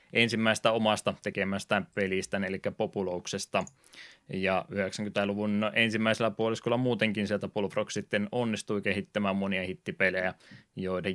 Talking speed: 100 wpm